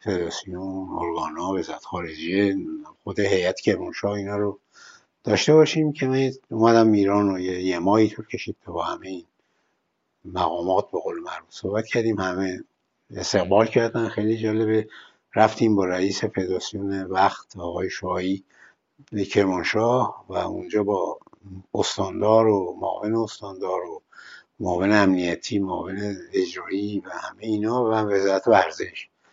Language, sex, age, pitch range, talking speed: Persian, male, 60-79, 95-115 Hz, 125 wpm